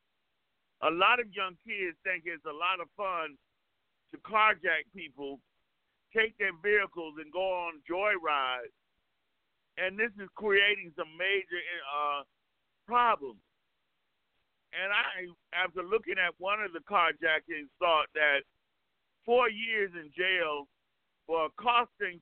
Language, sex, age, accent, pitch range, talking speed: English, male, 50-69, American, 170-210 Hz, 125 wpm